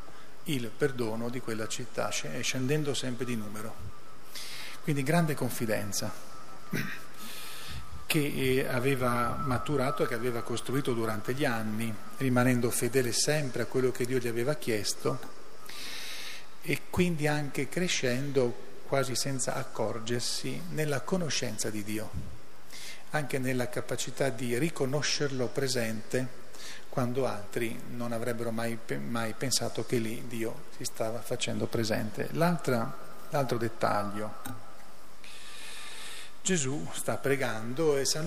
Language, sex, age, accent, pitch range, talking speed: Italian, male, 40-59, native, 115-140 Hz, 110 wpm